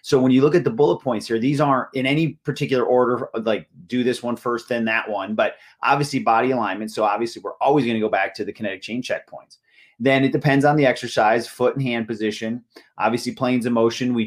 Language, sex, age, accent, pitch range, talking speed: English, male, 30-49, American, 110-125 Hz, 230 wpm